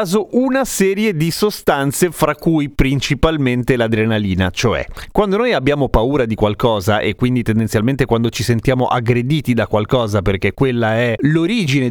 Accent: native